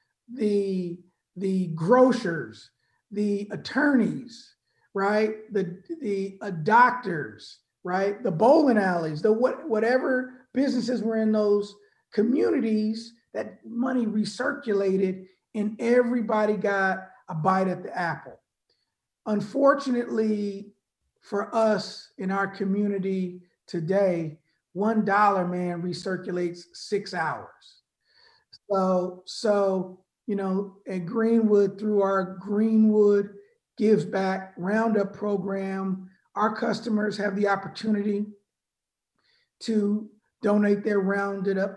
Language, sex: English, male